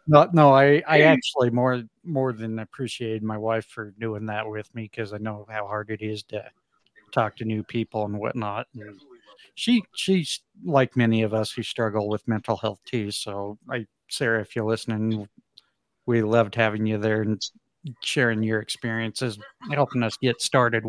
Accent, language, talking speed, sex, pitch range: American, English, 180 wpm, male, 110-135 Hz